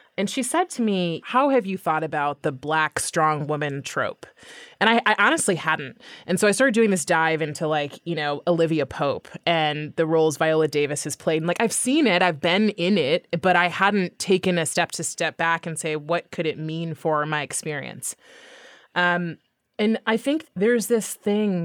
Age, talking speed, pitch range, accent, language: 20-39, 205 wpm, 155-190 Hz, American, English